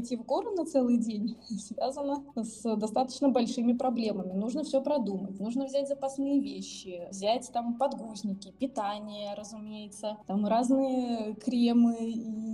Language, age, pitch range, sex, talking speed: Russian, 20-39, 215-255 Hz, female, 120 wpm